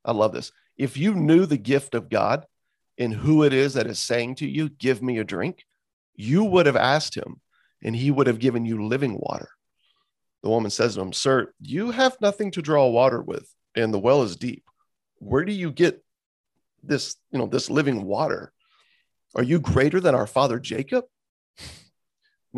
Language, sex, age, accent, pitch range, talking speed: English, male, 40-59, American, 115-180 Hz, 190 wpm